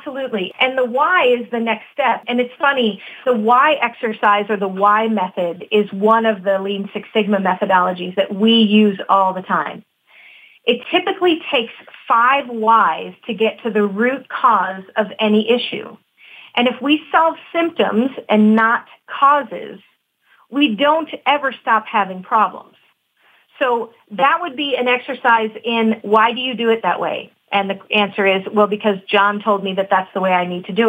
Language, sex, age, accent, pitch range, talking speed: English, female, 40-59, American, 205-250 Hz, 175 wpm